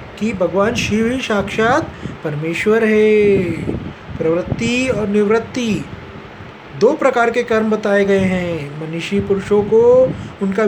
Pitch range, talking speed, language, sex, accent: 195-240 Hz, 120 wpm, Hindi, male, native